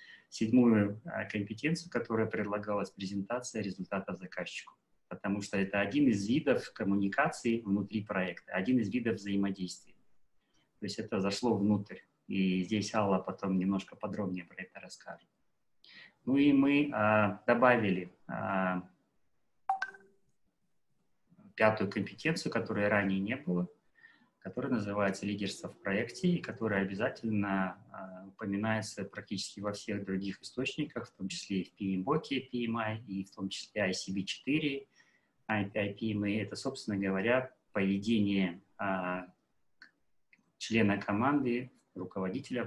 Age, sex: 20-39, male